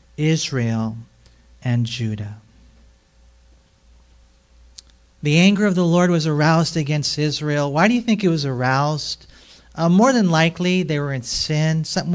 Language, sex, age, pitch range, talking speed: English, male, 40-59, 140-190 Hz, 140 wpm